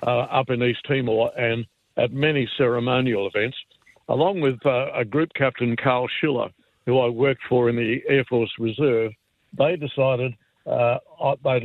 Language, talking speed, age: English, 160 wpm, 60-79